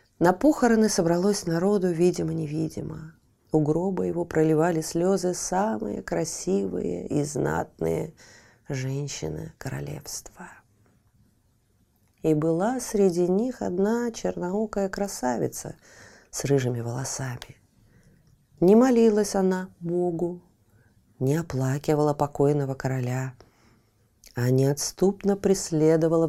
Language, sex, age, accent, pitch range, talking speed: Russian, female, 30-49, native, 130-195 Hz, 85 wpm